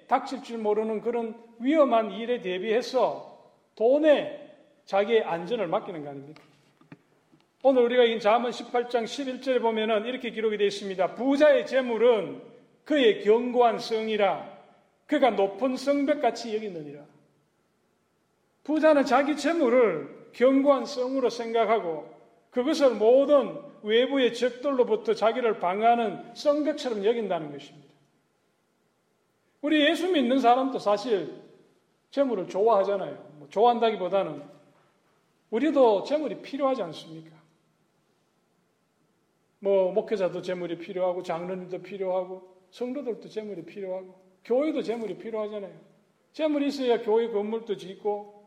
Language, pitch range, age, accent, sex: Korean, 195-260 Hz, 40-59, native, male